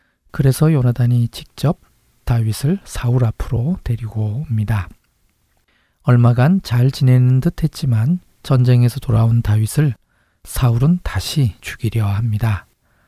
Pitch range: 115-140 Hz